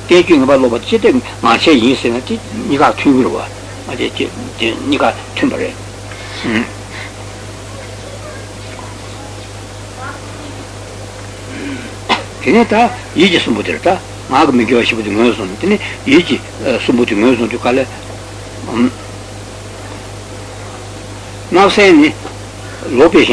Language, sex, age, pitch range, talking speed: Italian, male, 60-79, 100-120 Hz, 40 wpm